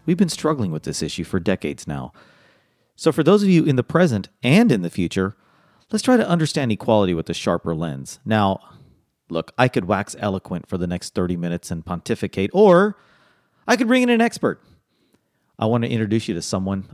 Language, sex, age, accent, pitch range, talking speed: English, male, 40-59, American, 95-145 Hz, 200 wpm